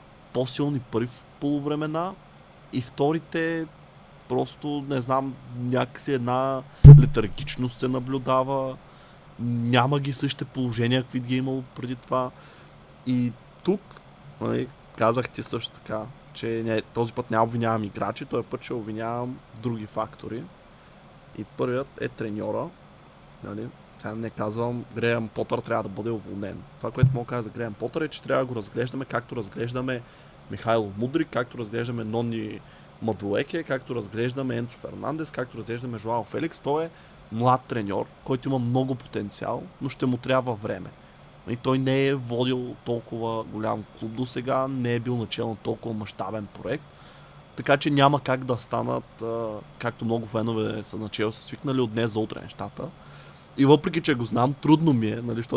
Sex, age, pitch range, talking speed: male, 20-39, 115-135 Hz, 155 wpm